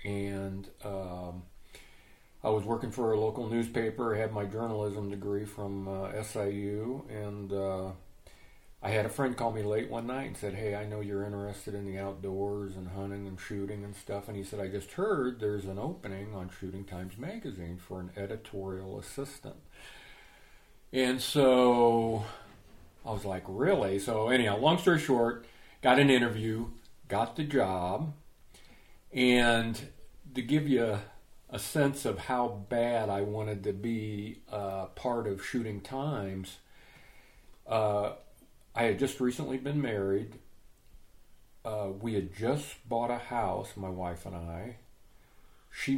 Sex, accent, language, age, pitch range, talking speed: male, American, English, 40-59, 100-125 Hz, 150 wpm